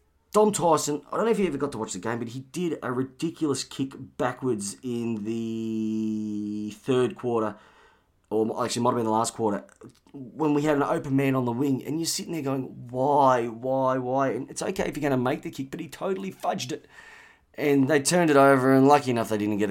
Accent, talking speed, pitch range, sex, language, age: Australian, 230 wpm, 110-135 Hz, male, English, 30-49